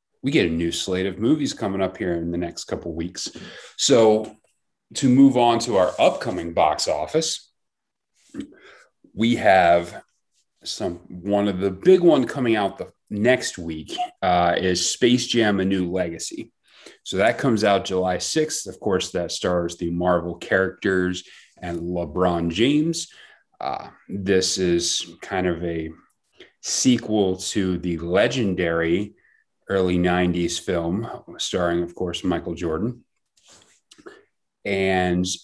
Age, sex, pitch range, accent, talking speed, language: 30-49, male, 85-105 Hz, American, 135 wpm, English